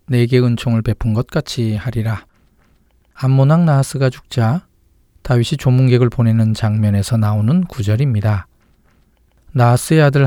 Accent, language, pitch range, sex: native, Korean, 110-140 Hz, male